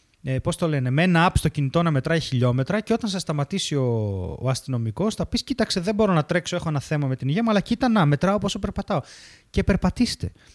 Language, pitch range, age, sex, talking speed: Greek, 135-175 Hz, 20-39, male, 230 wpm